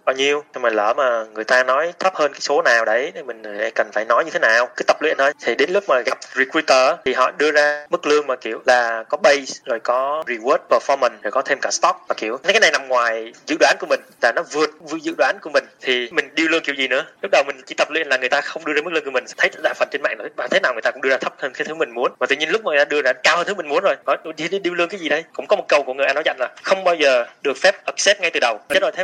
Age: 20-39